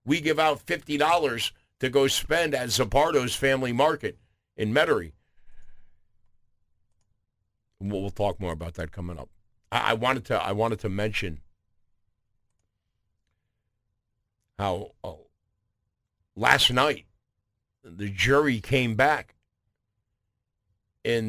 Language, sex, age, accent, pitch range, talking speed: English, male, 50-69, American, 100-125 Hz, 105 wpm